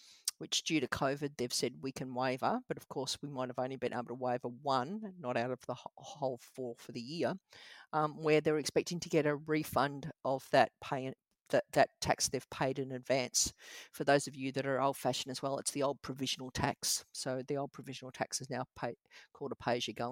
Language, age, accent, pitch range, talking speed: English, 50-69, Australian, 130-150 Hz, 220 wpm